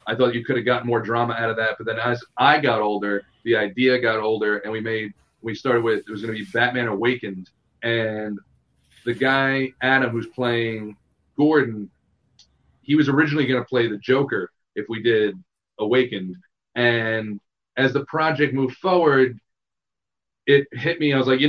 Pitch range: 110-135 Hz